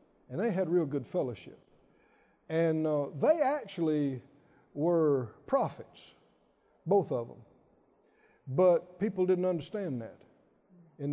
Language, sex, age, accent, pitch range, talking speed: English, male, 60-79, American, 150-245 Hz, 115 wpm